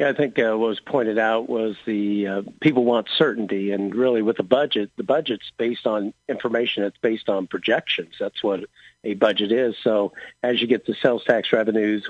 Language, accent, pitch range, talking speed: English, American, 105-115 Hz, 205 wpm